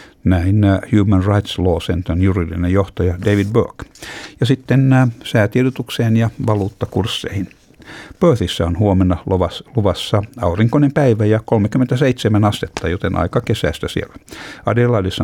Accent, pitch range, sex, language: native, 90-115 Hz, male, Finnish